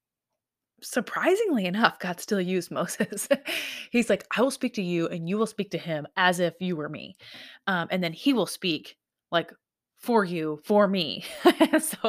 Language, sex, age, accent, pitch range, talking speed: English, female, 20-39, American, 165-215 Hz, 180 wpm